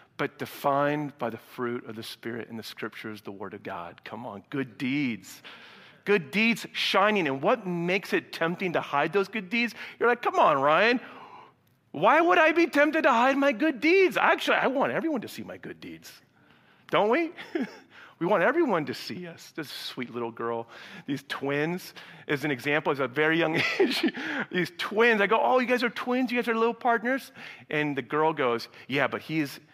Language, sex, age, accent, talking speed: English, male, 40-59, American, 200 wpm